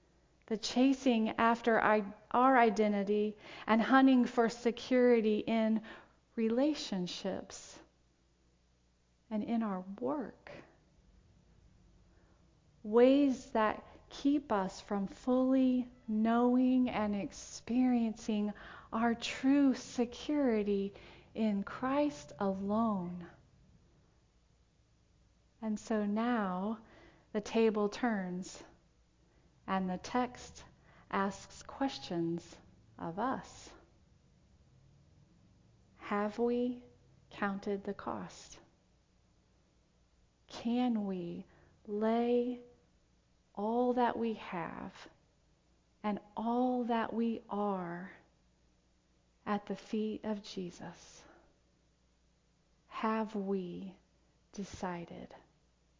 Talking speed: 75 wpm